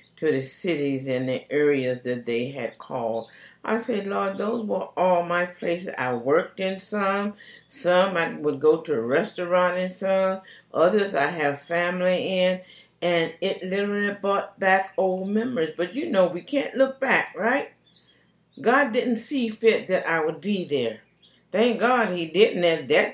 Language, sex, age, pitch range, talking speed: English, female, 60-79, 155-195 Hz, 170 wpm